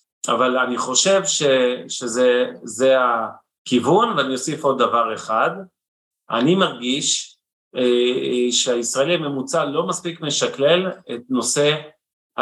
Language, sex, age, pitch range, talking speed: Hebrew, male, 40-59, 120-160 Hz, 95 wpm